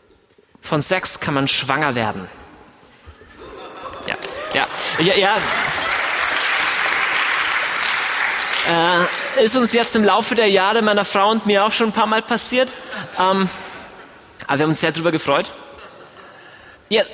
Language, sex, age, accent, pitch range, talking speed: German, male, 30-49, German, 160-225 Hz, 125 wpm